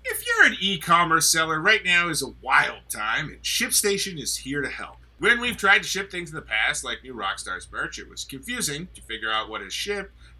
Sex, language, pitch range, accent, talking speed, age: male, English, 135-205 Hz, American, 225 wpm, 30-49